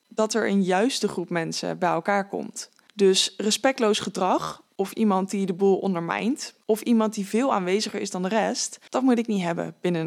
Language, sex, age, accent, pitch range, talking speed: English, female, 20-39, Dutch, 195-230 Hz, 195 wpm